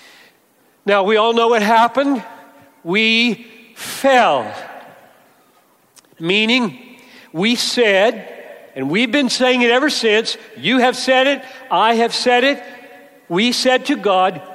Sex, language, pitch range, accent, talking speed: male, English, 190-285 Hz, American, 125 wpm